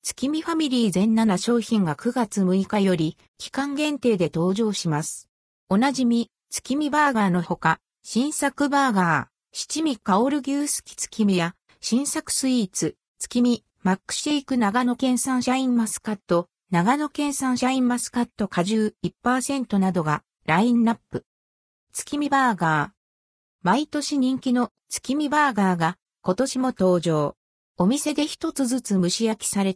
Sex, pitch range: female, 185-265 Hz